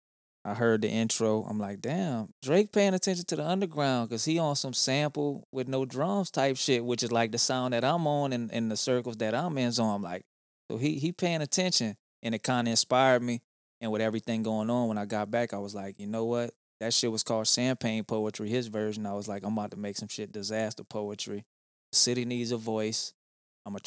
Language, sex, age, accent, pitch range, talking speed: English, male, 20-39, American, 110-130 Hz, 235 wpm